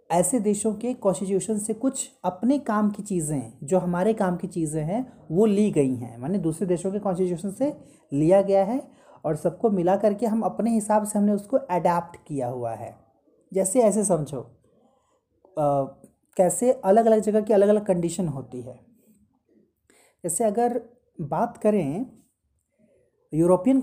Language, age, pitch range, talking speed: Hindi, 30-49, 165-220 Hz, 155 wpm